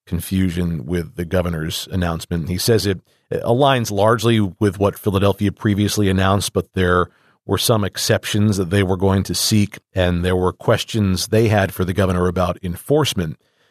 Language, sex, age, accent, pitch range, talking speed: English, male, 40-59, American, 90-105 Hz, 165 wpm